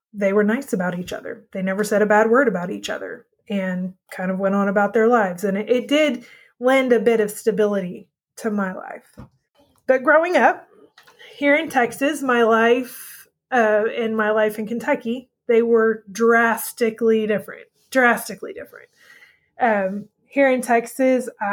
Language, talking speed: English, 165 wpm